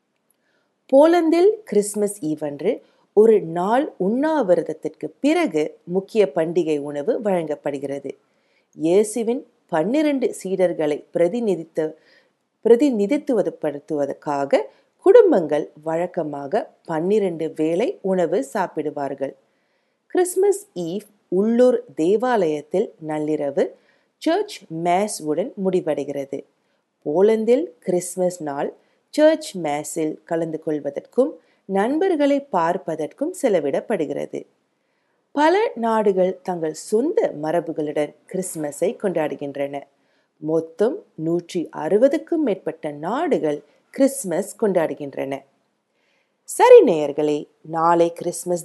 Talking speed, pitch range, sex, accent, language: 80 wpm, 155-235 Hz, female, Indian, English